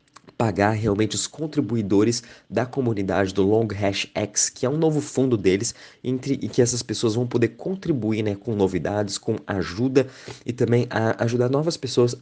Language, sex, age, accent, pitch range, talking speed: Portuguese, male, 20-39, Brazilian, 95-120 Hz, 170 wpm